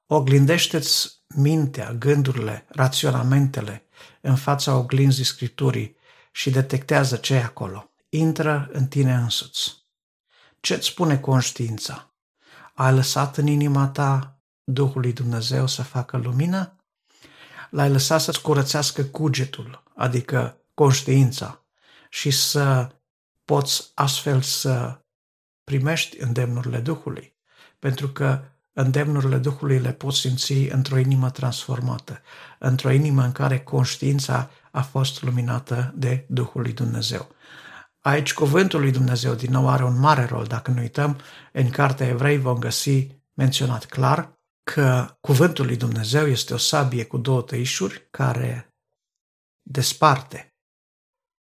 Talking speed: 115 wpm